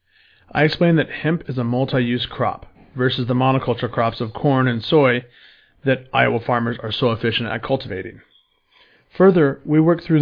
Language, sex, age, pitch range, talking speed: English, male, 30-49, 120-140 Hz, 165 wpm